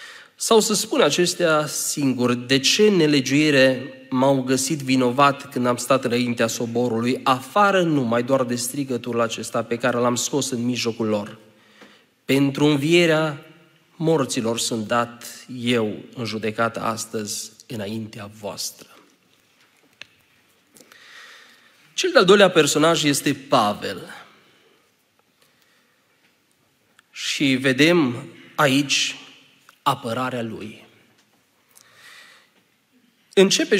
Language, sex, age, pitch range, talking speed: Romanian, male, 30-49, 120-160 Hz, 90 wpm